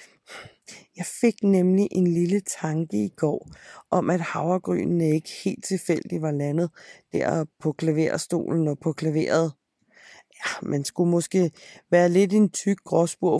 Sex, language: female, Danish